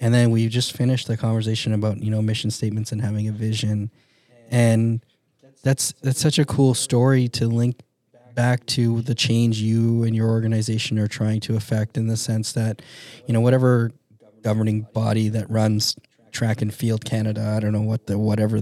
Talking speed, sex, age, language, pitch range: 185 wpm, male, 20-39, English, 110-120 Hz